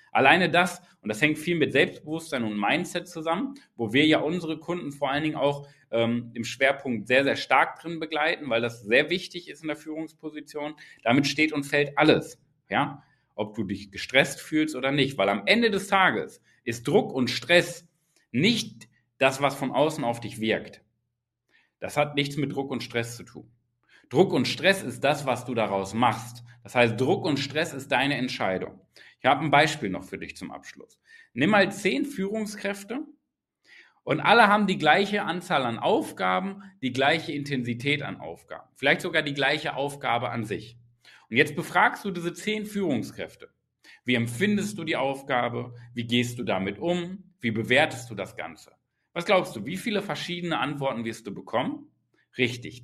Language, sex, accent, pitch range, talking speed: German, male, German, 120-175 Hz, 180 wpm